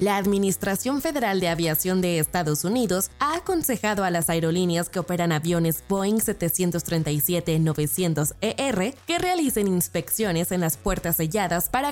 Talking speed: 130 wpm